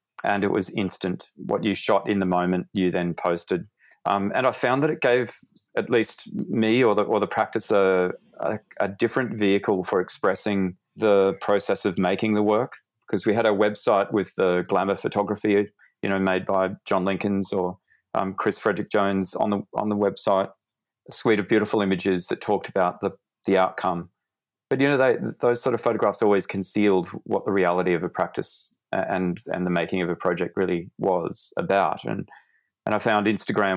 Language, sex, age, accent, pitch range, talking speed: English, male, 30-49, Australian, 90-105 Hz, 190 wpm